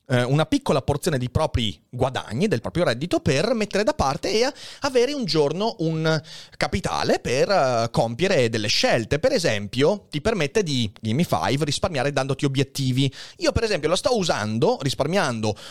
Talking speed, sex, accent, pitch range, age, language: 155 wpm, male, native, 125-185 Hz, 30-49, Italian